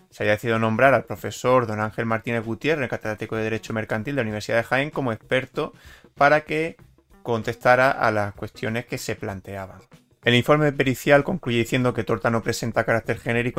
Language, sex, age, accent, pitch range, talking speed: Spanish, male, 30-49, Spanish, 110-135 Hz, 185 wpm